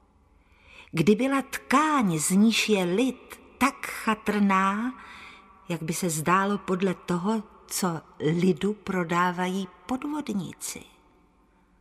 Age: 50-69